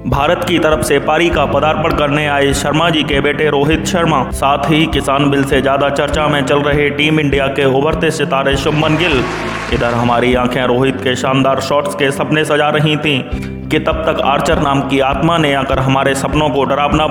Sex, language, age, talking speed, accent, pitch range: male, Hindi, 30-49, 200 wpm, native, 140-160 Hz